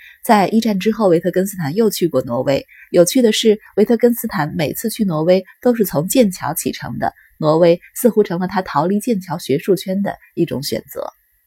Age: 20-39